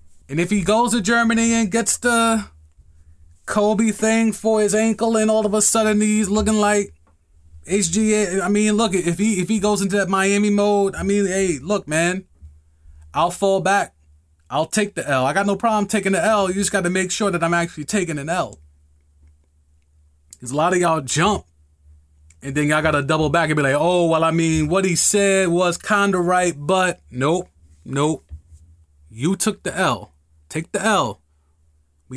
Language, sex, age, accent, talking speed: English, male, 20-39, American, 190 wpm